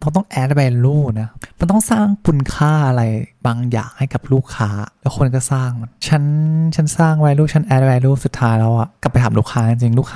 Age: 20-39